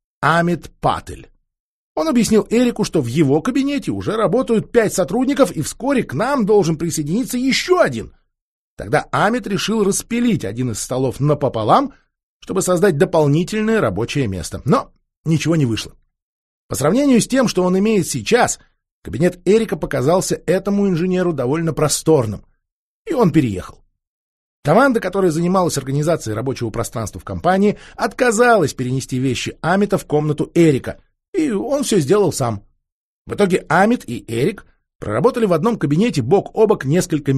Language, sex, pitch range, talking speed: Russian, male, 135-210 Hz, 145 wpm